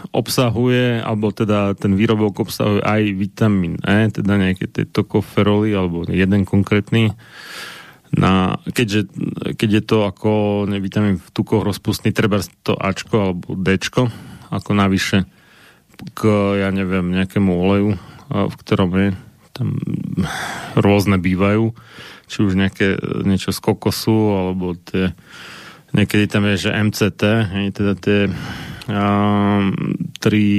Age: 30-49